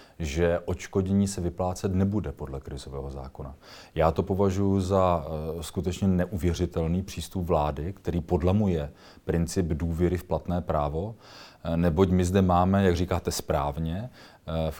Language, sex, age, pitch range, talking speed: Czech, male, 40-59, 80-95 Hz, 125 wpm